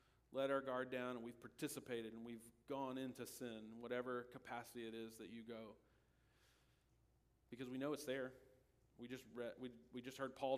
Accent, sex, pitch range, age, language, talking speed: American, male, 120-150 Hz, 40-59, English, 180 wpm